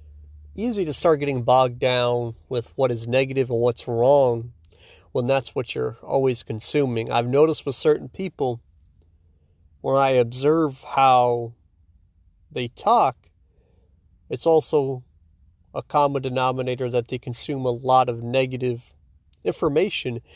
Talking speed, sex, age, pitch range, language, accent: 125 wpm, male, 40-59, 95-135 Hz, English, American